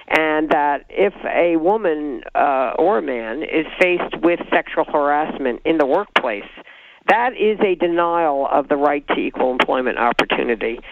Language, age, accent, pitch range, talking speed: English, 50-69, American, 140-175 Hz, 155 wpm